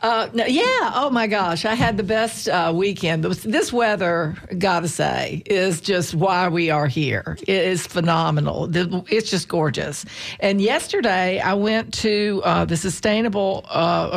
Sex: female